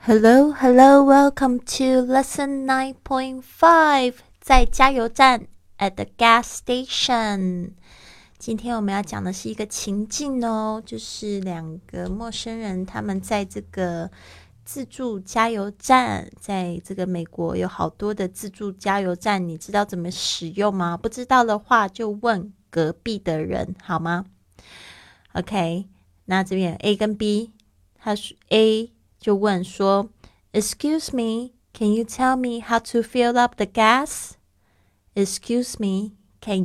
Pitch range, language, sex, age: 180-230 Hz, Chinese, female, 20-39